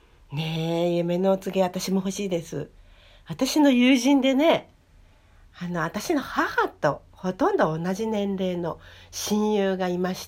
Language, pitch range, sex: Japanese, 145-220 Hz, female